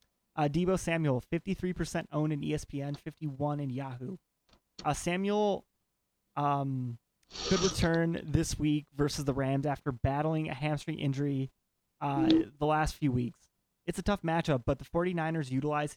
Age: 20-39